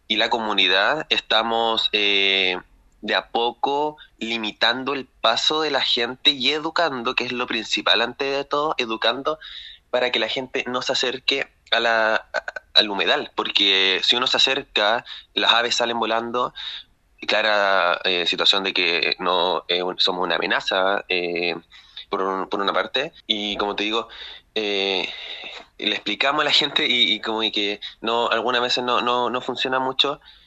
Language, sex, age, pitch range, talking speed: Spanish, male, 20-39, 100-125 Hz, 160 wpm